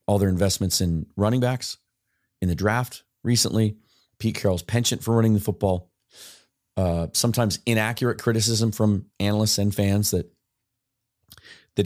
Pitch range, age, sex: 95-120 Hz, 30-49, male